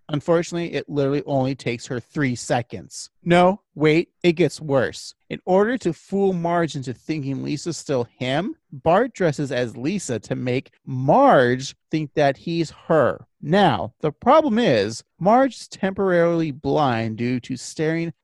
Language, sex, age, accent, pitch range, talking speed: English, male, 30-49, American, 125-195 Hz, 145 wpm